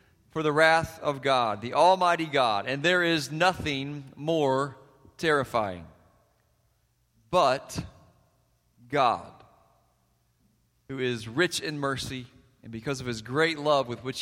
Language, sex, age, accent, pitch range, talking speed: English, male, 40-59, American, 135-165 Hz, 120 wpm